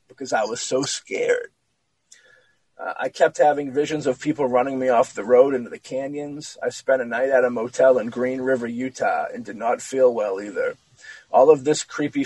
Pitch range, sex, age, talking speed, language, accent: 125-160 Hz, male, 30-49, 200 wpm, English, American